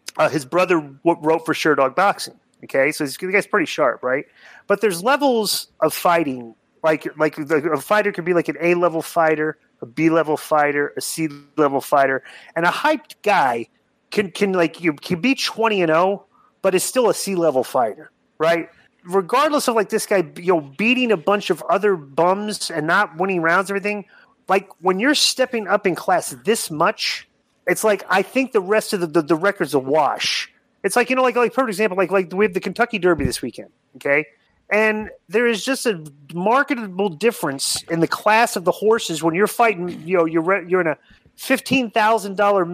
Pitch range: 165-220 Hz